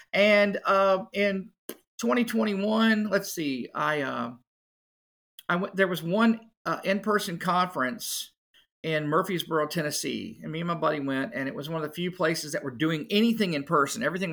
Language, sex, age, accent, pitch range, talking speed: English, male, 40-59, American, 150-205 Hz, 170 wpm